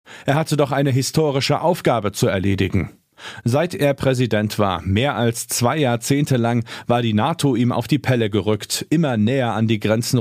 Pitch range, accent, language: 110-140 Hz, German, German